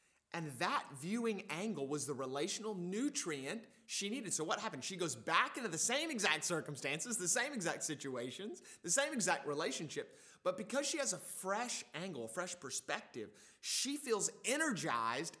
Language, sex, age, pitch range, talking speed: English, male, 30-49, 125-180 Hz, 165 wpm